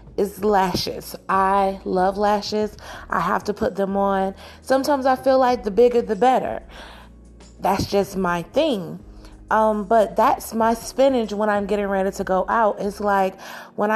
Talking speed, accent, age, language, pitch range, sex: 165 wpm, American, 30-49, English, 205-240 Hz, female